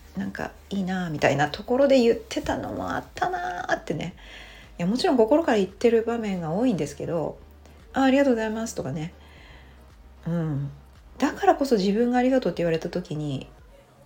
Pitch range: 145-235 Hz